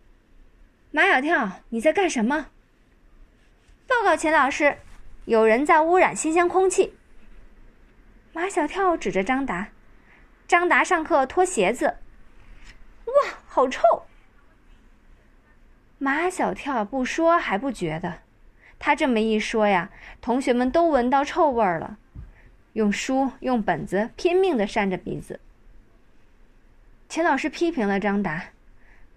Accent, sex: native, female